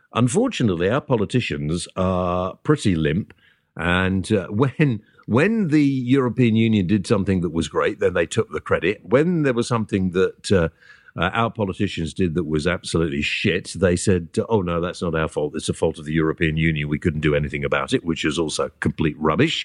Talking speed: 190 wpm